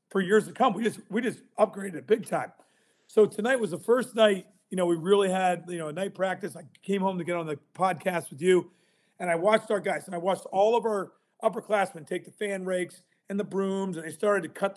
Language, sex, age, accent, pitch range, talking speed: English, male, 40-59, American, 180-220 Hz, 250 wpm